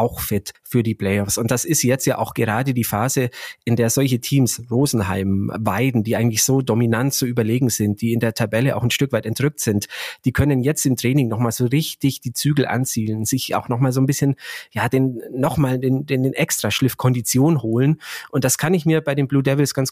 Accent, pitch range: German, 110-130 Hz